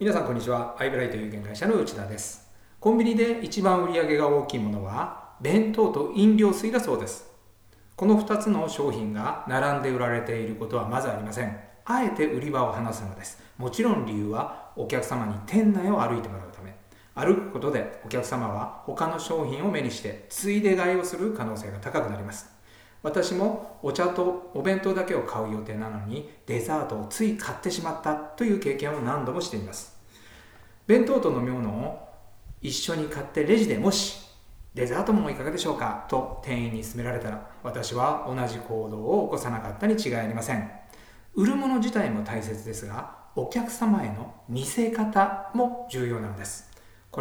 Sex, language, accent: male, Japanese, native